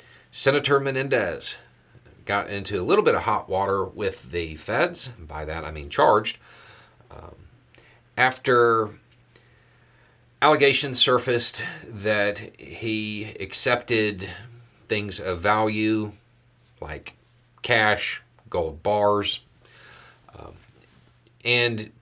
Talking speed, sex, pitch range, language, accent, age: 95 wpm, male, 95-120 Hz, English, American, 40-59